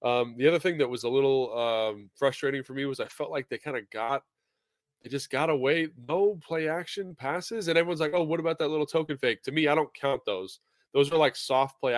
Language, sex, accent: English, male, American